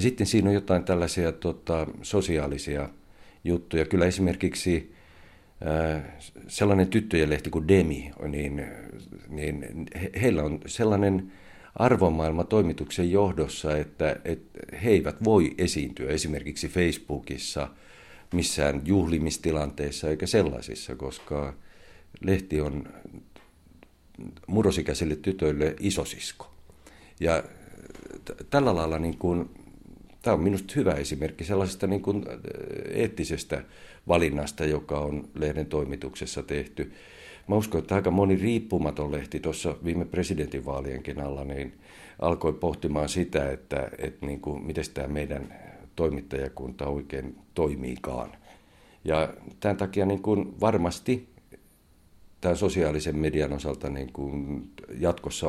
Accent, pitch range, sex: native, 75-95 Hz, male